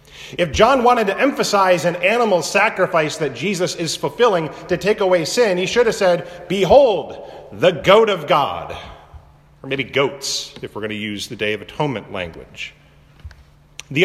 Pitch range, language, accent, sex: 125-170 Hz, English, American, male